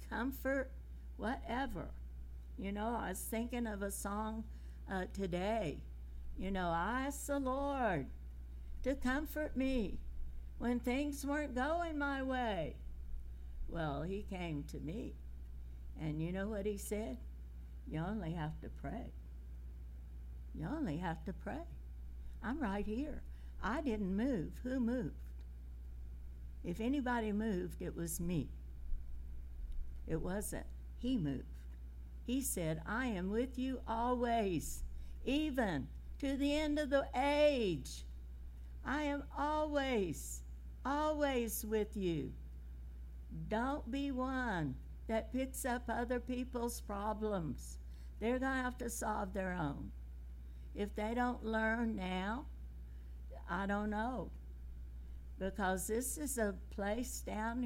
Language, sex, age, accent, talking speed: English, female, 60-79, American, 120 wpm